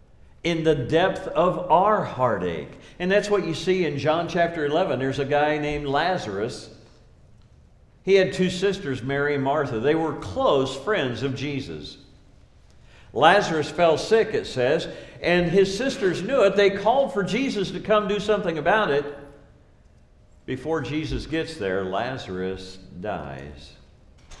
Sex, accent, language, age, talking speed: male, American, English, 60-79, 145 wpm